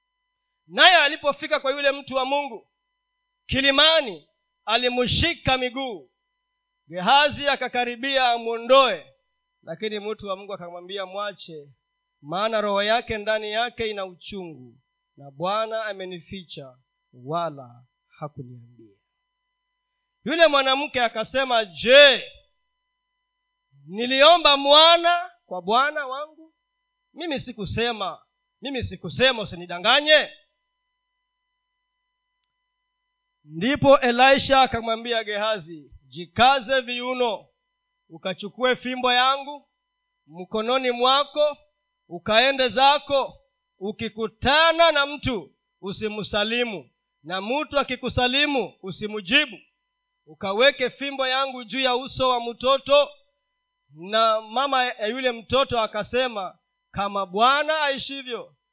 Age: 40-59